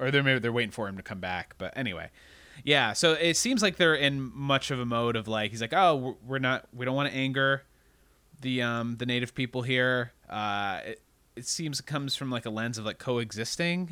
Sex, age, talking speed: male, 30-49, 235 wpm